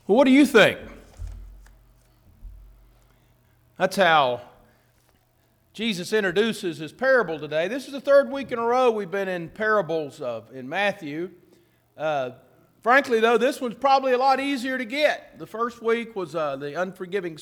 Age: 40-59